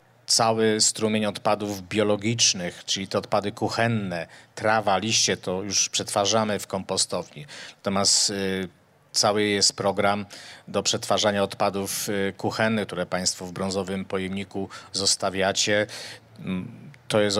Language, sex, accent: Polish, male, native